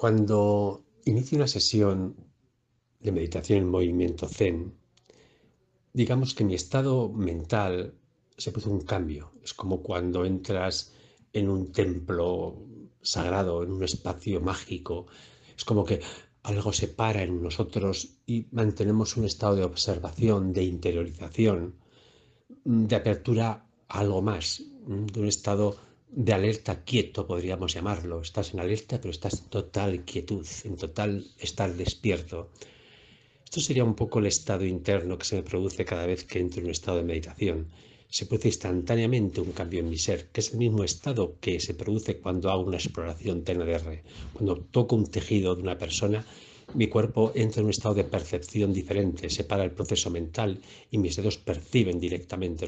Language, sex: Spanish, male